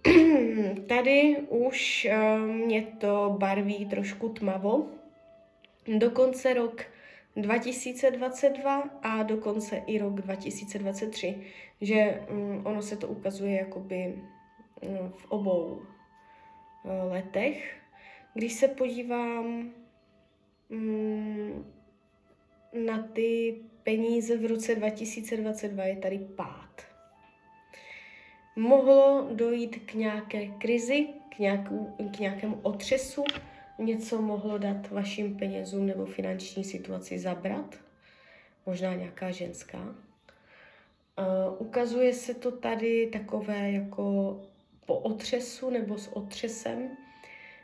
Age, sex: 20-39, female